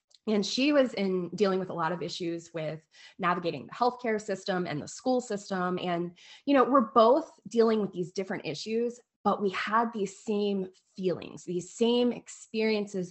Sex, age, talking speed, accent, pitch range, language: female, 20-39, 175 wpm, American, 180-230 Hz, English